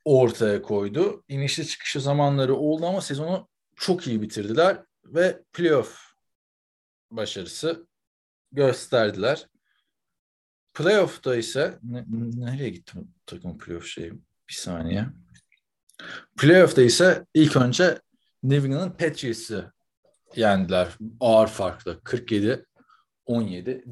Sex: male